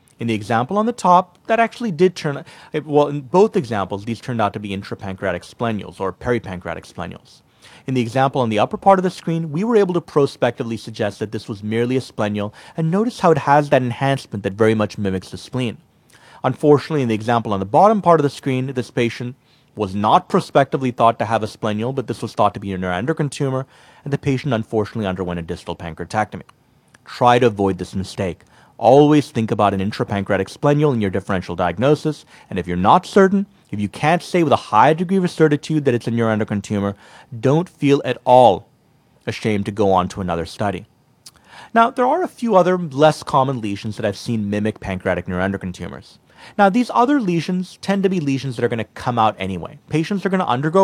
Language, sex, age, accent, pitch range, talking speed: English, male, 30-49, American, 105-155 Hz, 210 wpm